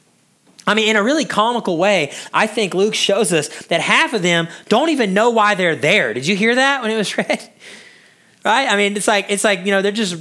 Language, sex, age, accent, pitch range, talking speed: English, male, 30-49, American, 160-225 Hz, 240 wpm